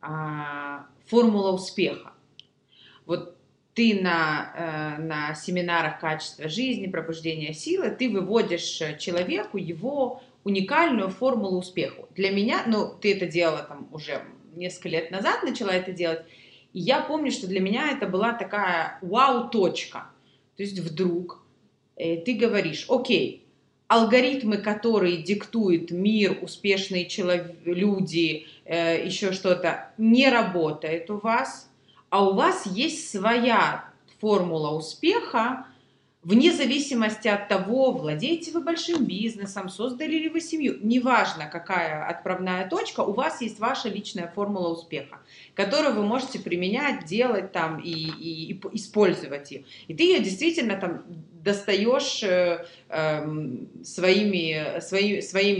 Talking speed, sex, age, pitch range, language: 120 wpm, female, 30-49, 165-225 Hz, Russian